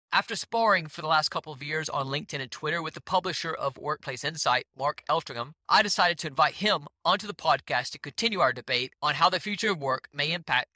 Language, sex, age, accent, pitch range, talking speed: English, male, 40-59, American, 140-180 Hz, 225 wpm